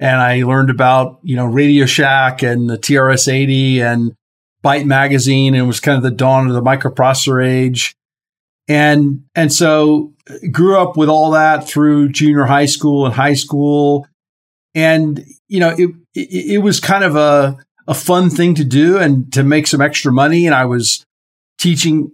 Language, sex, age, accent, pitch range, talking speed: English, male, 50-69, American, 130-155 Hz, 175 wpm